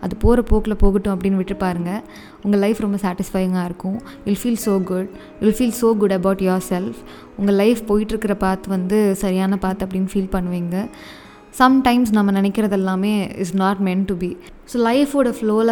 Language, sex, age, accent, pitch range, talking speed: Tamil, female, 20-39, native, 190-215 Hz, 165 wpm